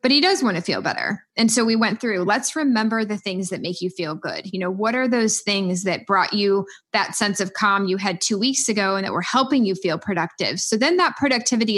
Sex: female